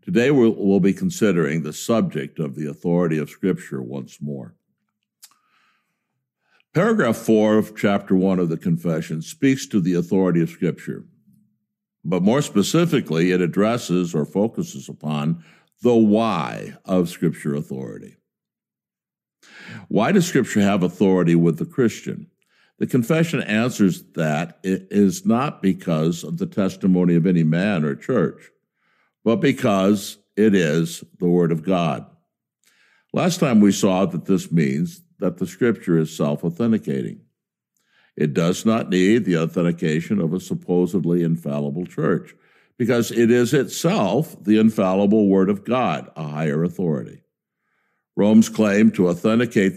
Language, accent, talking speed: English, American, 135 wpm